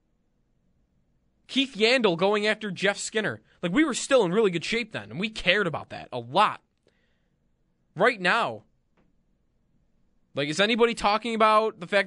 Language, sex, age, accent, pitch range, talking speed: English, male, 20-39, American, 125-195 Hz, 155 wpm